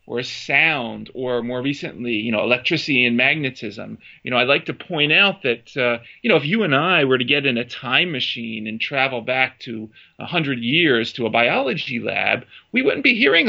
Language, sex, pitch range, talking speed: English, male, 120-175 Hz, 205 wpm